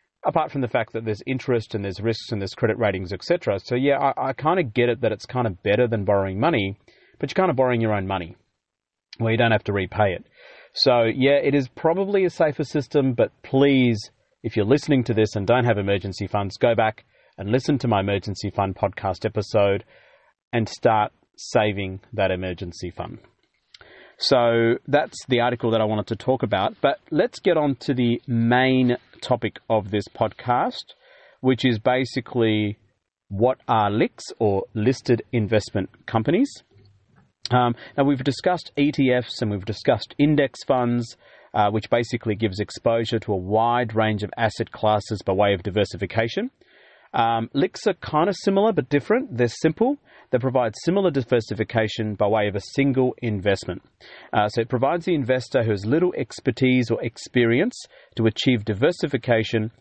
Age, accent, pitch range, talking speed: 30-49, Australian, 105-130 Hz, 175 wpm